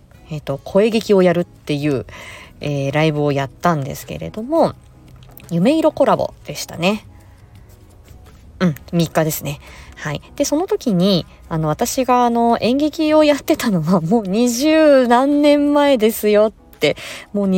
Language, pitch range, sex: Japanese, 145-230 Hz, female